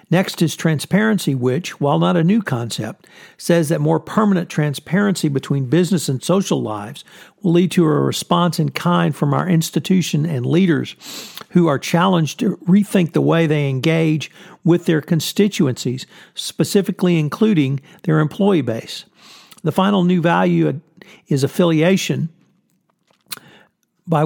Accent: American